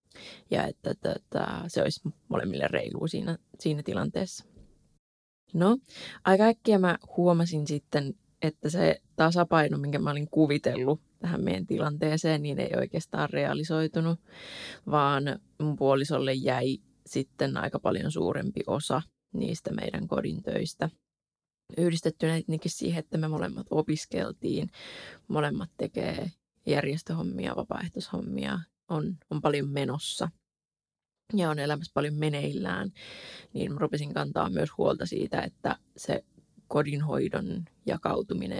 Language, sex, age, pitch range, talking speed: Finnish, female, 20-39, 145-170 Hz, 110 wpm